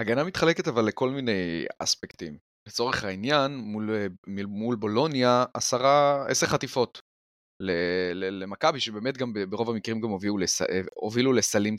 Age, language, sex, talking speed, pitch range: 30-49, Hebrew, male, 120 wpm, 100-130 Hz